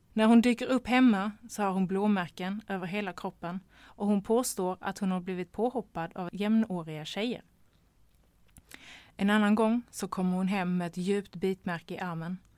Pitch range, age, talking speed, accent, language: 180-210 Hz, 20-39, 170 wpm, native, Swedish